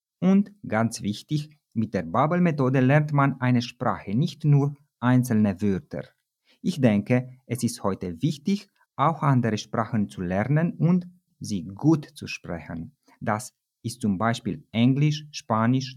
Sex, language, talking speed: male, Romanian, 140 wpm